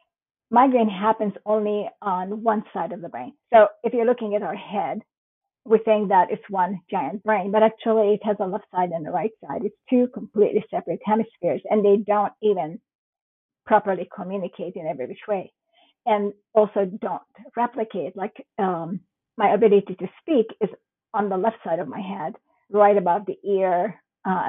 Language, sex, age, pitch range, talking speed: English, female, 50-69, 195-225 Hz, 175 wpm